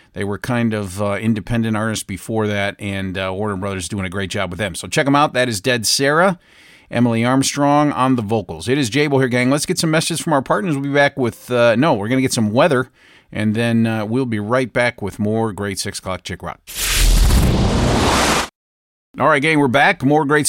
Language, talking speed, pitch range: English, 230 wpm, 105-140 Hz